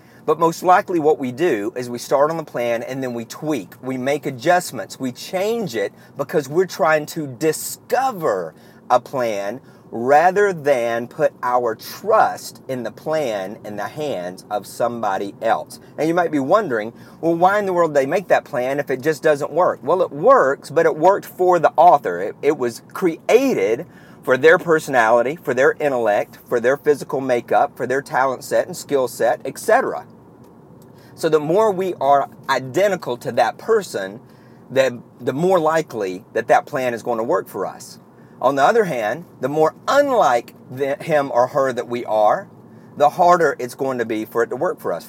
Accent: American